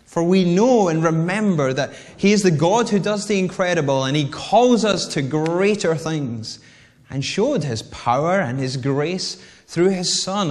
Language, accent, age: English, British, 30-49